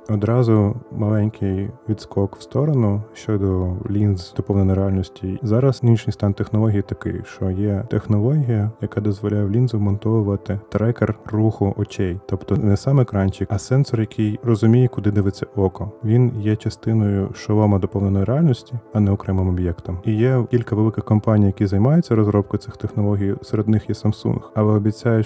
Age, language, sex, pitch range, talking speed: 20-39, Ukrainian, male, 95-110 Hz, 145 wpm